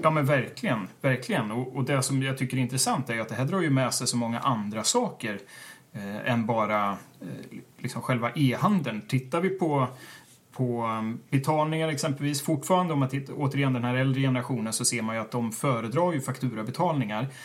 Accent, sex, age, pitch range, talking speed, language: native, male, 30-49, 115-140 Hz, 185 wpm, Swedish